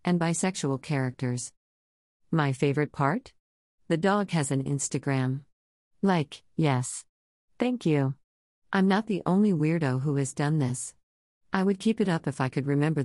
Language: English